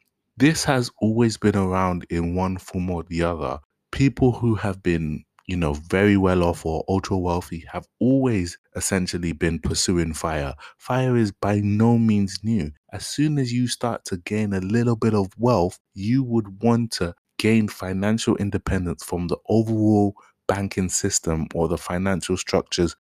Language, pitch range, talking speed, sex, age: English, 85-105 Hz, 165 wpm, male, 20-39